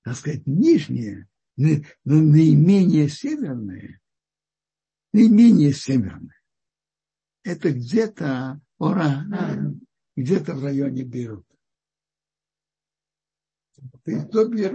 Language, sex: Russian, male